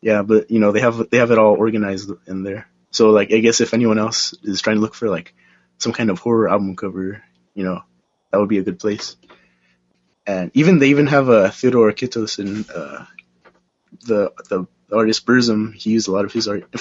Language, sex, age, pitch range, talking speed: English, male, 20-39, 95-115 Hz, 225 wpm